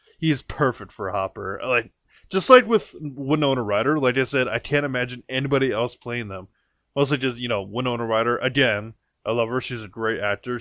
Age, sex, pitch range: 20-39, male, 110-140 Hz